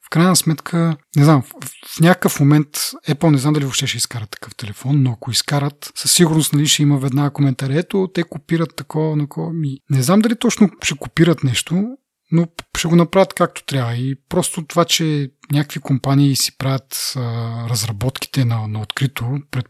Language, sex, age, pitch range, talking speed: Bulgarian, male, 30-49, 130-165 Hz, 190 wpm